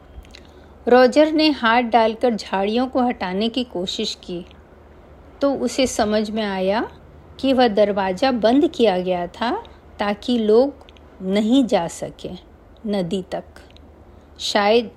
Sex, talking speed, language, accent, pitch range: female, 120 wpm, Hindi, native, 175-250 Hz